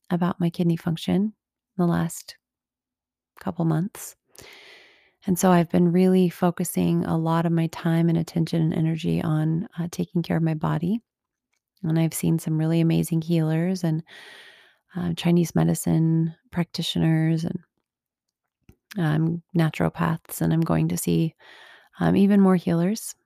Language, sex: English, female